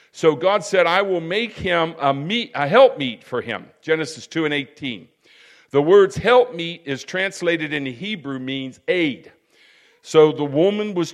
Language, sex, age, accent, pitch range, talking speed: English, male, 50-69, American, 130-170 Hz, 160 wpm